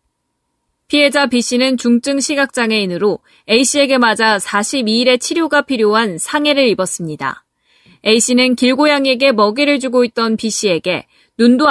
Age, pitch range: 20-39, 210-265 Hz